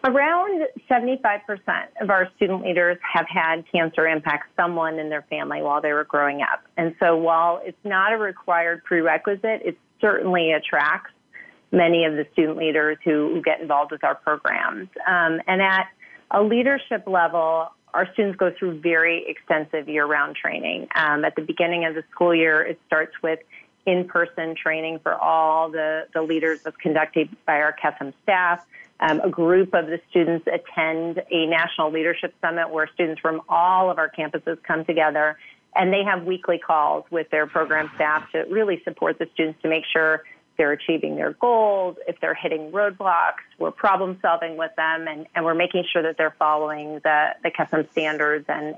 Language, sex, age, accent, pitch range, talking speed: English, female, 40-59, American, 160-185 Hz, 175 wpm